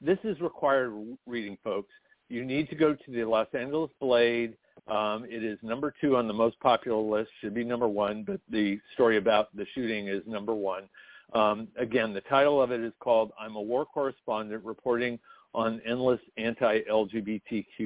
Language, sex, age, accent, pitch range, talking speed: English, male, 50-69, American, 110-135 Hz, 180 wpm